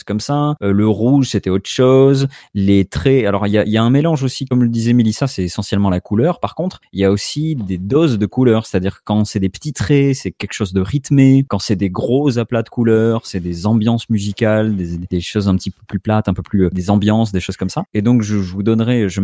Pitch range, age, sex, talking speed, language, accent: 95-130 Hz, 30-49, male, 260 wpm, French, French